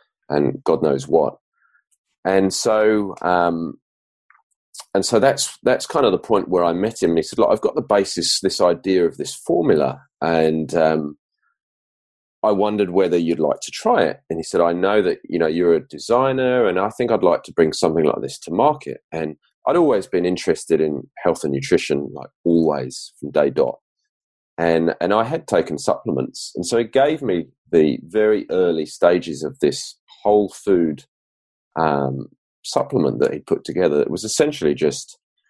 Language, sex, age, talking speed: English, male, 30-49, 185 wpm